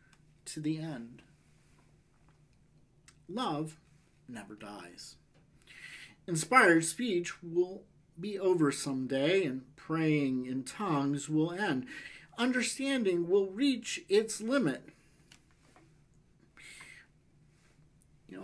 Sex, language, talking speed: male, English, 80 wpm